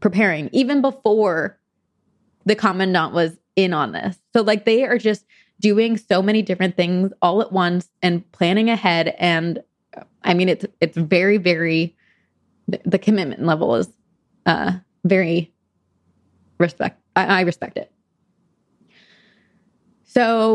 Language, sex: English, female